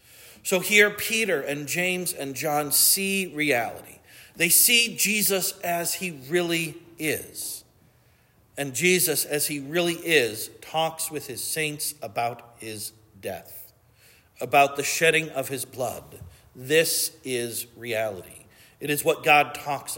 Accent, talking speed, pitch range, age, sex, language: American, 130 wpm, 130-175 Hz, 50-69, male, English